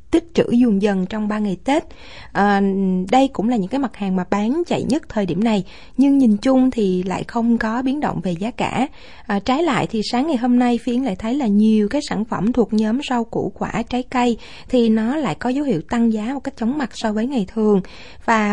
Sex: female